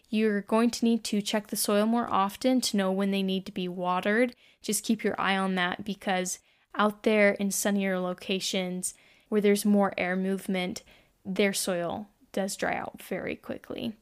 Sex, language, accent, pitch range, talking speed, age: female, English, American, 195-235 Hz, 180 wpm, 10-29